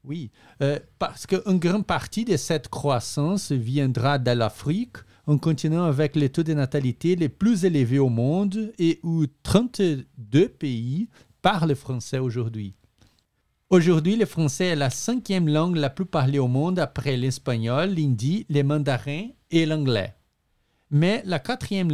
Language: French